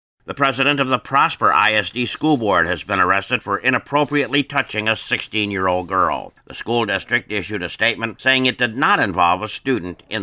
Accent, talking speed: American, 180 wpm